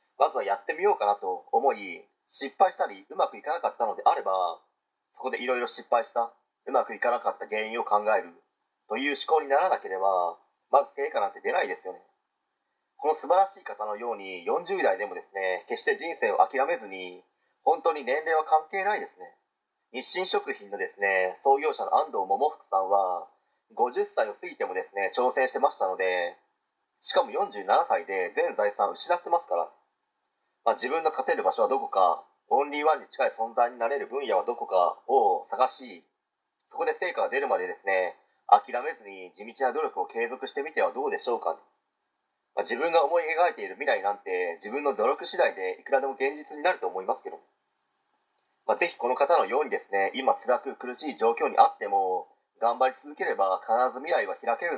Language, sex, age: Japanese, male, 30-49